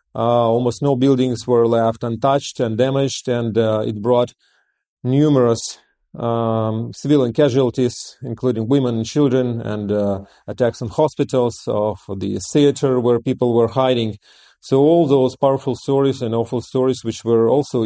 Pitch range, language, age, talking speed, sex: 115-135 Hz, English, 30-49, 150 wpm, male